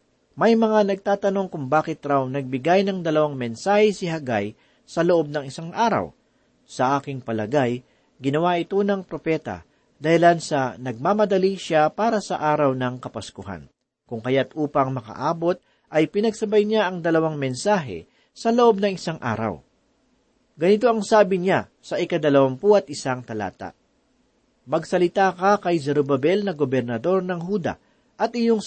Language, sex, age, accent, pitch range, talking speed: Filipino, male, 40-59, native, 135-195 Hz, 140 wpm